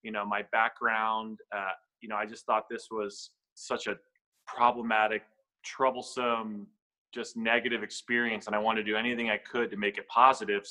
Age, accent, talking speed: 20-39, American, 175 wpm